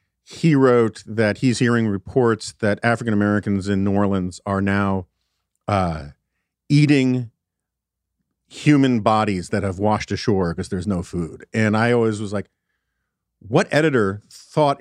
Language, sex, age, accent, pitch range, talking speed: English, male, 40-59, American, 100-140 Hz, 135 wpm